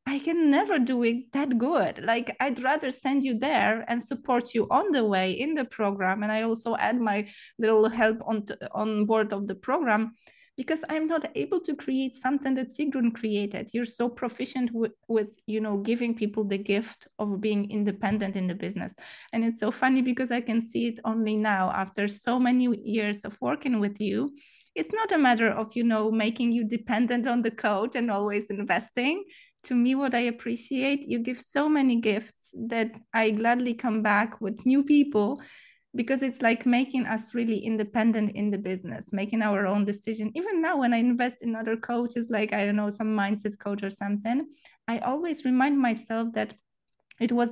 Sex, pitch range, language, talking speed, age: female, 210-250 Hz, Polish, 190 wpm, 20-39